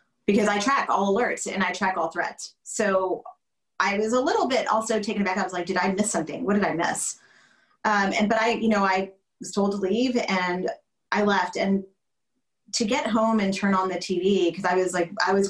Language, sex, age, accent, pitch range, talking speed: English, female, 30-49, American, 175-210 Hz, 230 wpm